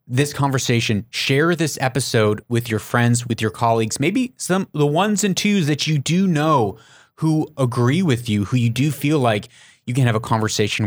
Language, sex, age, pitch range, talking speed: English, male, 30-49, 115-150 Hz, 195 wpm